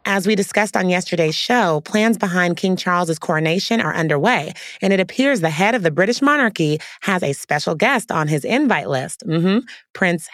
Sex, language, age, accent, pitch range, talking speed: female, English, 30-49, American, 160-215 Hz, 190 wpm